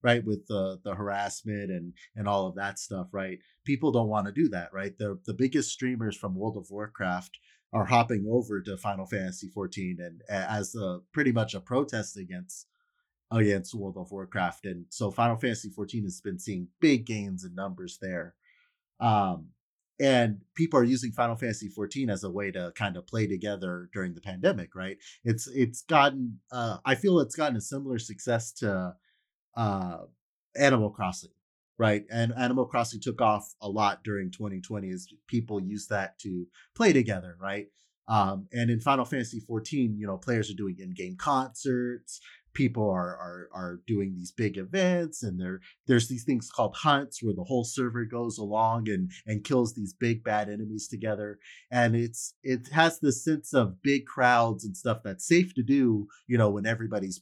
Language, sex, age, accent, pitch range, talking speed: English, male, 30-49, American, 100-125 Hz, 180 wpm